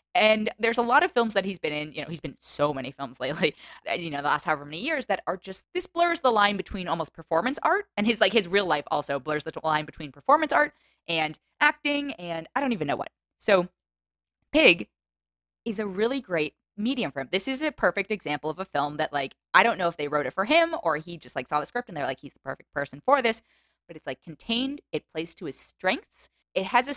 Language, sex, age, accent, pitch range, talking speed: English, female, 20-39, American, 150-225 Hz, 250 wpm